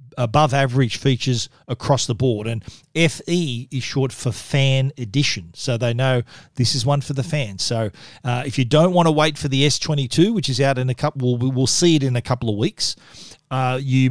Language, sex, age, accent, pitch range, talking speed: English, male, 40-59, Australian, 125-150 Hz, 215 wpm